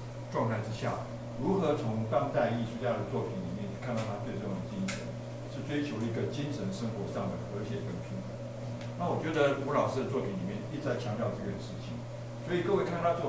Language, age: Chinese, 60-79